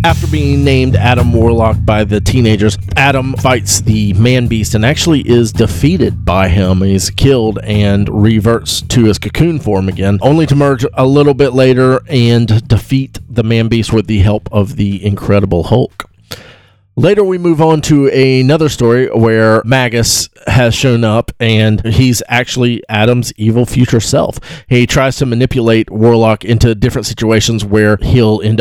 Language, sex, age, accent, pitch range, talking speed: English, male, 40-59, American, 105-130 Hz, 160 wpm